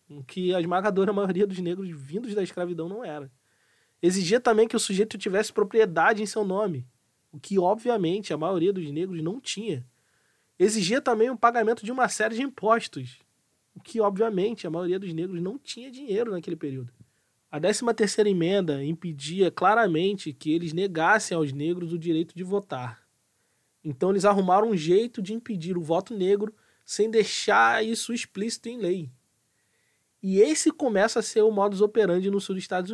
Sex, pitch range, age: male, 170-215 Hz, 20-39